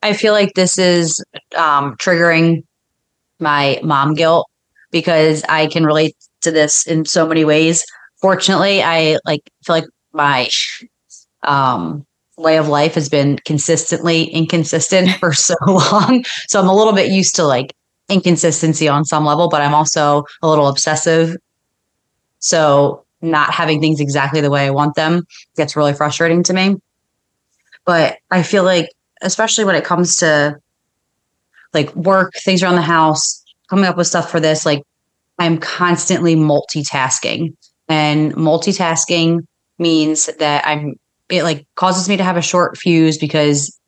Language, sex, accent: English, female, American